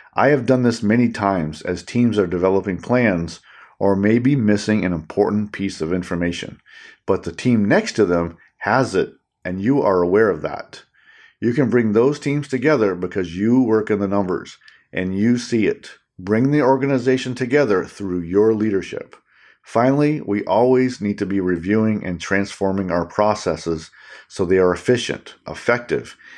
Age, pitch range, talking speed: 50-69, 90-120 Hz, 165 wpm